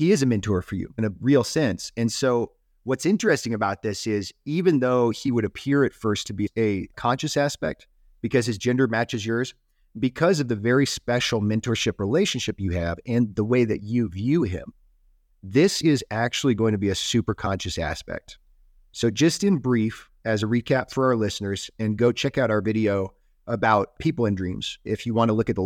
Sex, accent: male, American